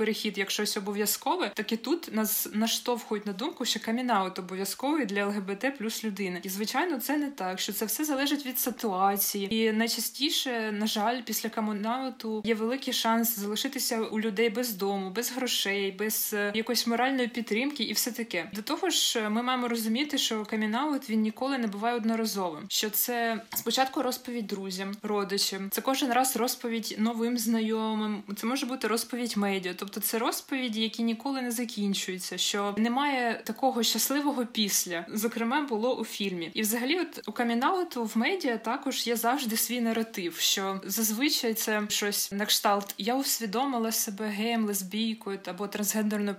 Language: Ukrainian